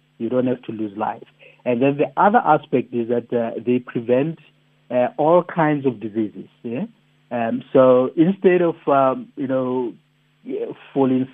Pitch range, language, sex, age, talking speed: 115-135 Hz, English, male, 60-79, 160 wpm